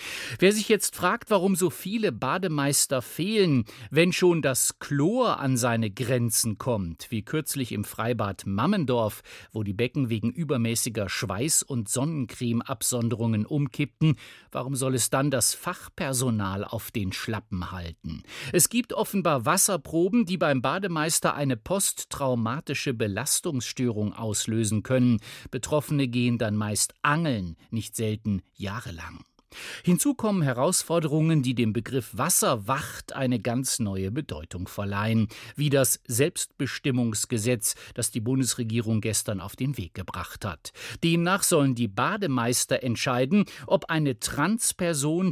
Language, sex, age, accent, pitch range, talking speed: German, male, 50-69, German, 115-155 Hz, 125 wpm